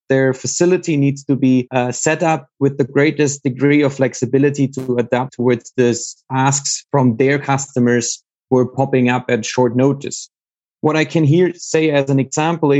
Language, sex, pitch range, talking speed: English, male, 125-155 Hz, 175 wpm